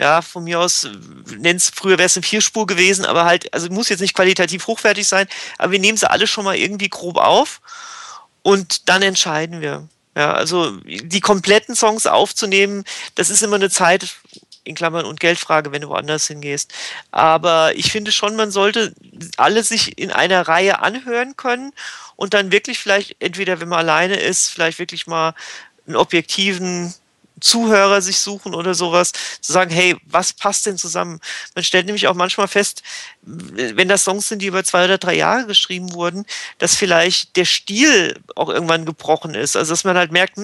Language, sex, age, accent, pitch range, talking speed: German, male, 40-59, German, 175-210 Hz, 180 wpm